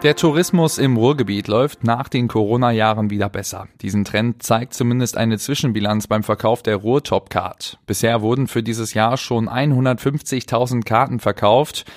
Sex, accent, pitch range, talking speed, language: male, German, 100-120 Hz, 145 wpm, German